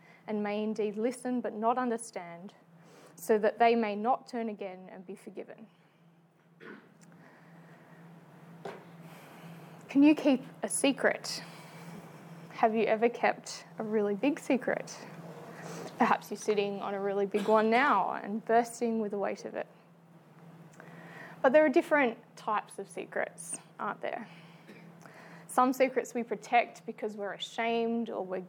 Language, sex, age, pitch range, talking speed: English, female, 20-39, 170-230 Hz, 135 wpm